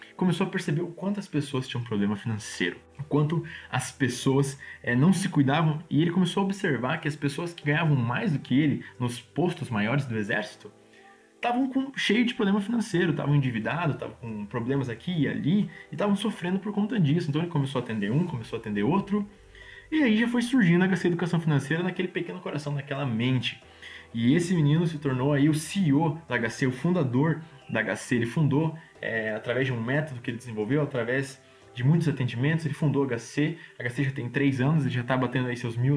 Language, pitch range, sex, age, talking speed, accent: Portuguese, 130-185 Hz, male, 20-39, 210 wpm, Brazilian